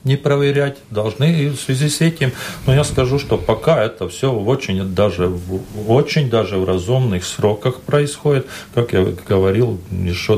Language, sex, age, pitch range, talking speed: Russian, male, 40-59, 95-125 Hz, 160 wpm